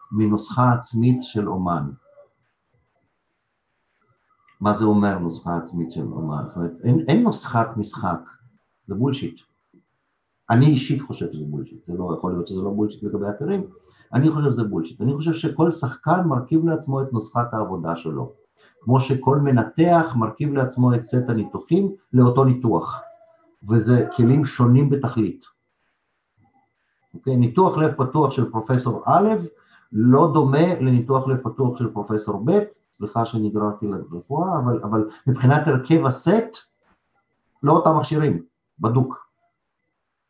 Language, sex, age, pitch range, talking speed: Hebrew, male, 50-69, 105-140 Hz, 130 wpm